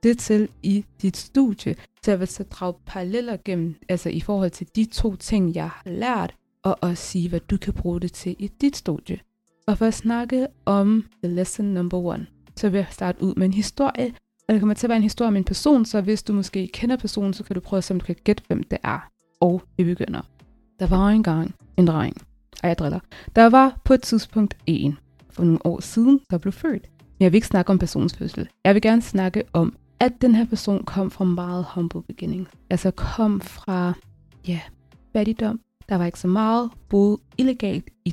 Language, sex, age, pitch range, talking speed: Danish, female, 20-39, 180-225 Hz, 215 wpm